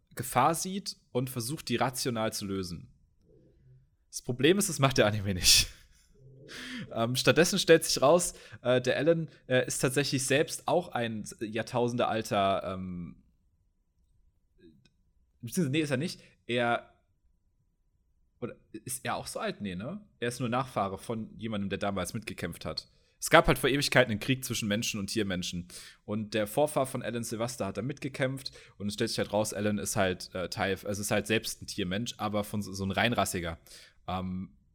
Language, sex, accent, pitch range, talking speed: German, male, German, 95-125 Hz, 170 wpm